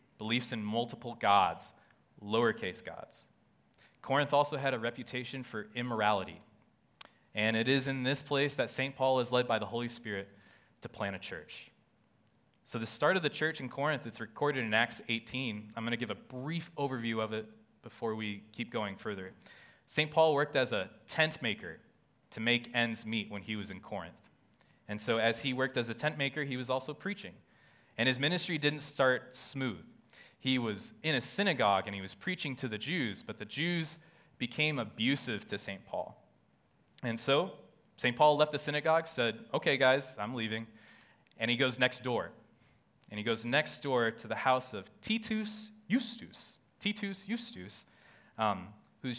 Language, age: English, 20-39